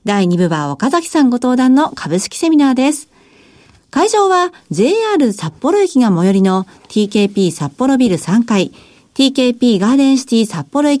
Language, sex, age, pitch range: Japanese, female, 50-69, 190-280 Hz